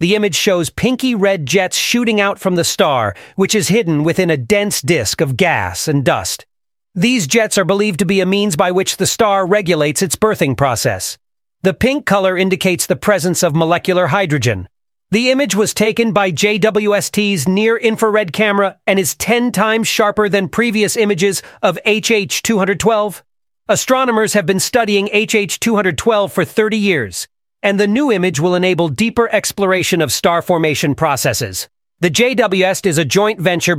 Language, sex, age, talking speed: English, male, 40-59, 160 wpm